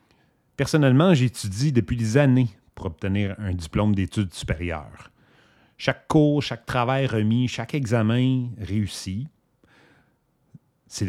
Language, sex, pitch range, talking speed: English, male, 90-125 Hz, 110 wpm